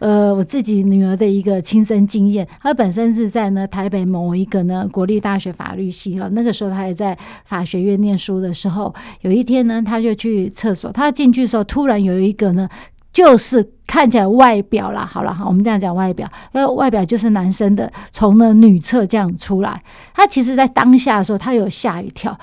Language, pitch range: Chinese, 200-245 Hz